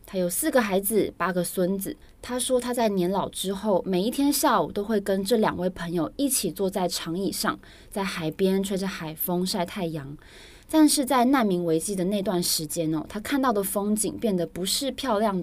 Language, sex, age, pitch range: Chinese, female, 20-39, 175-225 Hz